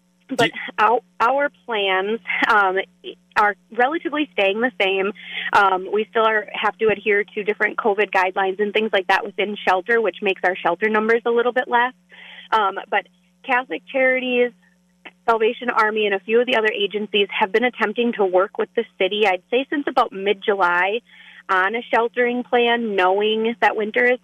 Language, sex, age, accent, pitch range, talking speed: English, female, 30-49, American, 195-235 Hz, 170 wpm